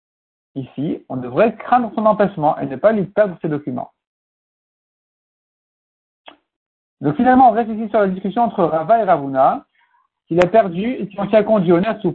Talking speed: 165 wpm